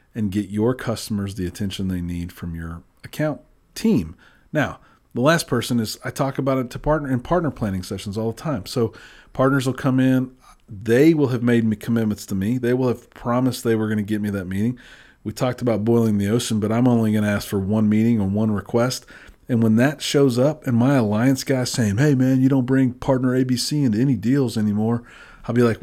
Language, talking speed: English, 225 wpm